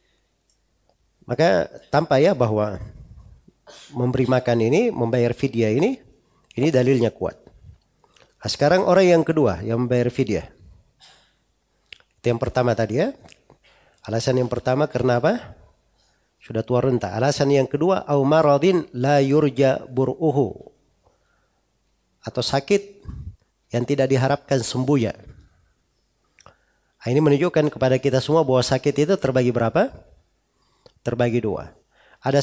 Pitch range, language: 120-155 Hz, Indonesian